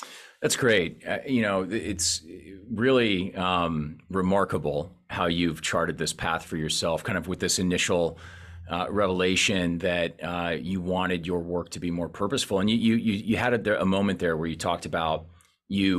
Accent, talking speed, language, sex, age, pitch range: American, 180 wpm, English, male, 30-49, 80-95 Hz